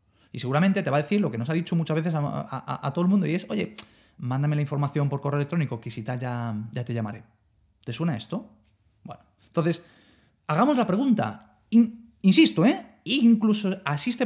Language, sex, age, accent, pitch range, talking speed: Spanish, male, 30-49, Spanish, 120-180 Hz, 200 wpm